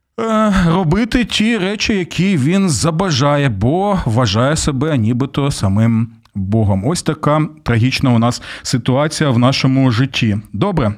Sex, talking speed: male, 120 wpm